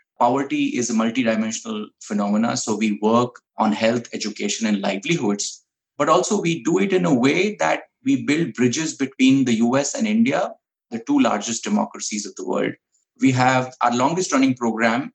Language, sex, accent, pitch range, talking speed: English, male, Indian, 115-170 Hz, 170 wpm